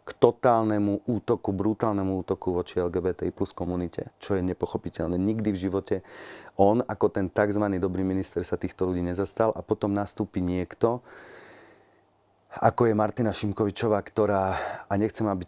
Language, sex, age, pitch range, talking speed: Slovak, male, 40-59, 95-110 Hz, 140 wpm